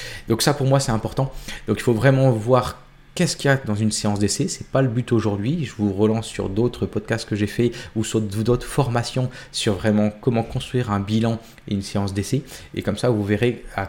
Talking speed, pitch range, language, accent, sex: 235 wpm, 110-140 Hz, French, French, male